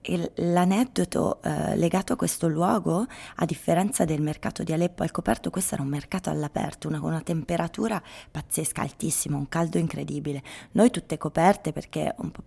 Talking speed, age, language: 155 wpm, 20-39, Italian